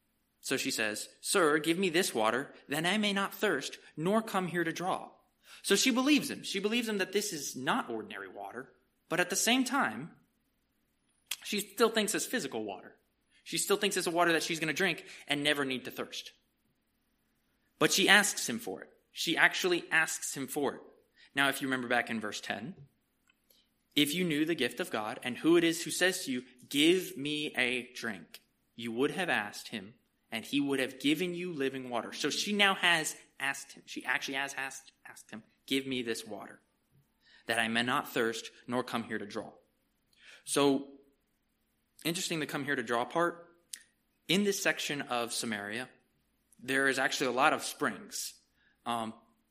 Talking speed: 190 wpm